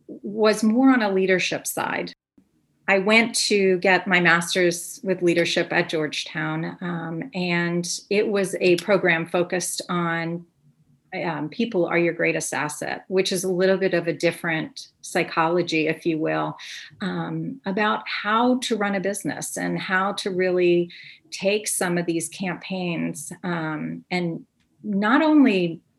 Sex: female